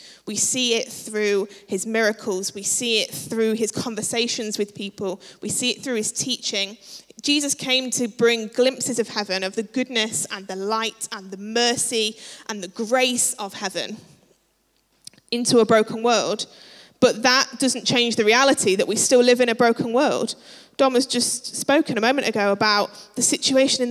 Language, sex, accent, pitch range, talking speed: English, female, British, 210-245 Hz, 175 wpm